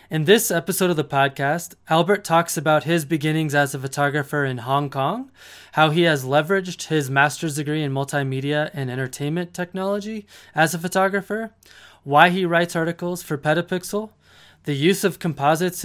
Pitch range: 145-190 Hz